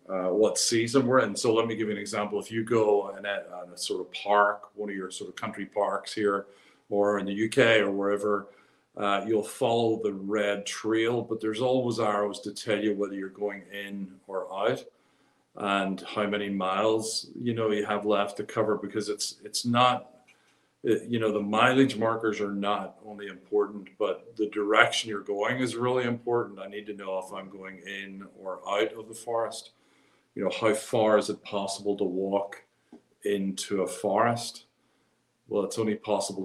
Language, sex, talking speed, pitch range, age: English, male, 190 wpm, 100-110 Hz, 50-69